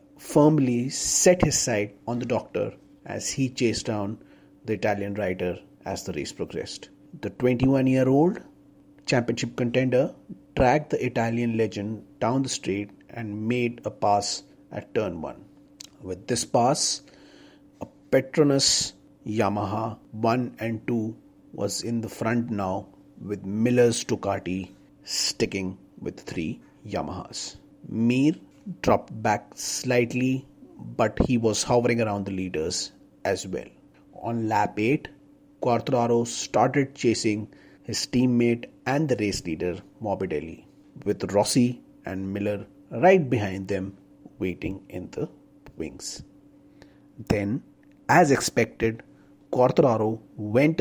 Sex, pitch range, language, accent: male, 105-125 Hz, Hindi, native